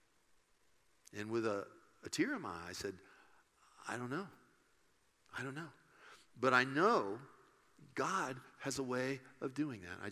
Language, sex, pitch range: English, male, 135-190 Hz